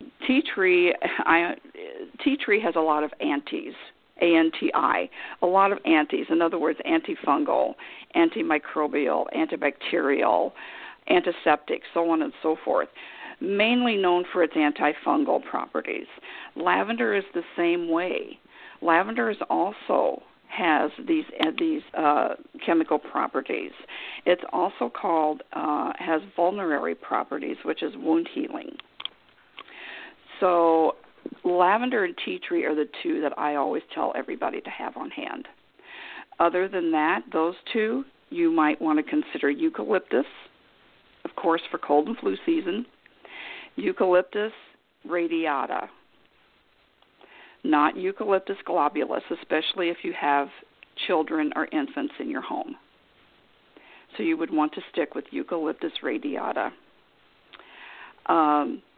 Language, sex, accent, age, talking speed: English, female, American, 50-69, 125 wpm